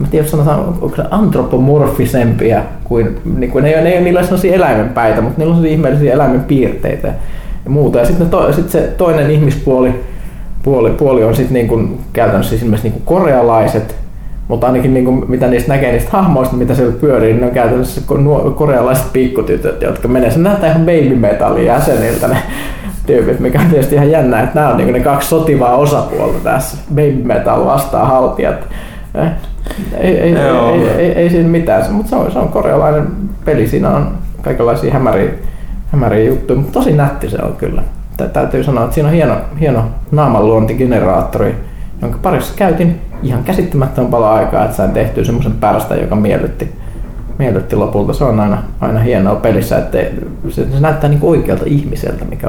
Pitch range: 120-155 Hz